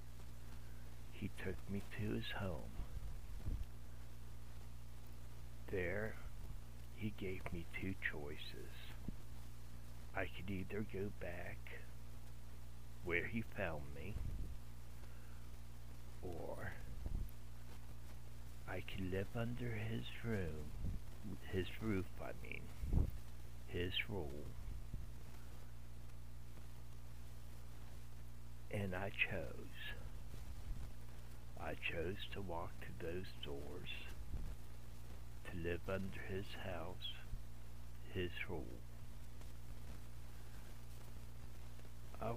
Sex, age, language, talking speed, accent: male, 60-79, English, 75 wpm, American